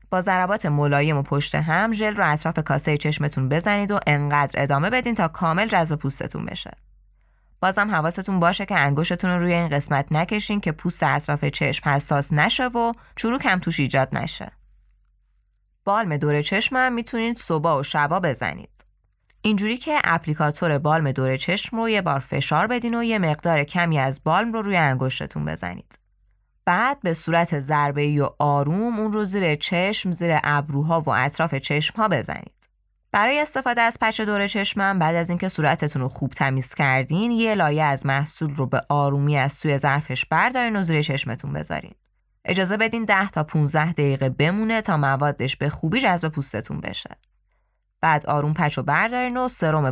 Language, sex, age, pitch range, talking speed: Persian, female, 20-39, 140-200 Hz, 165 wpm